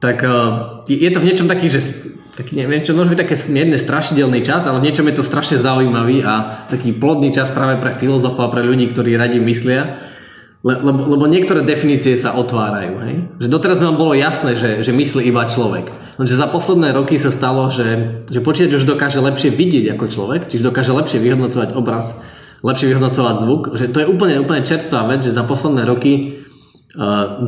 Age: 20-39